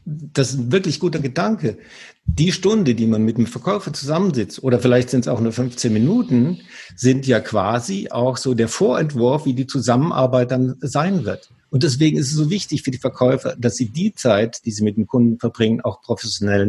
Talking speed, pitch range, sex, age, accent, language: 200 wpm, 115-140 Hz, male, 50-69, German, German